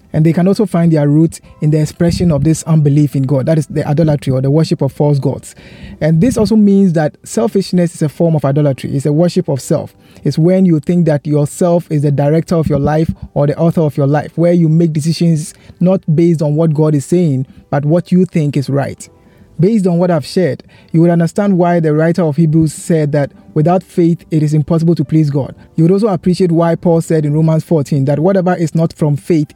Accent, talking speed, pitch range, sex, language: Nigerian, 235 wpm, 150-175 Hz, male, English